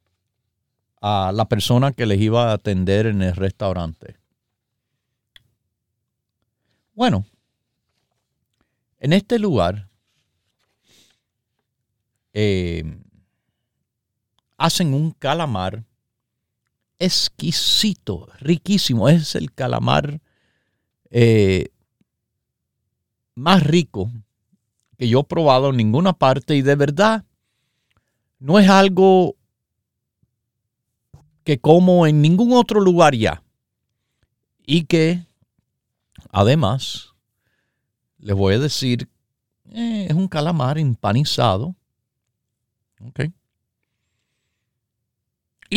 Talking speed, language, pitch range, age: 80 wpm, Spanish, 110-145 Hz, 50-69